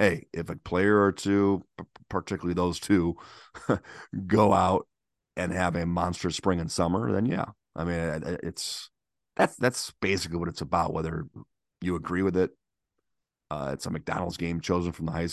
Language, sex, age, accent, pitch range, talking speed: English, male, 30-49, American, 85-95 Hz, 170 wpm